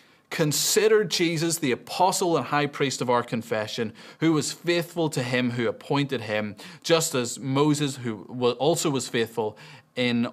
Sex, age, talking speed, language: male, 30-49, 150 wpm, English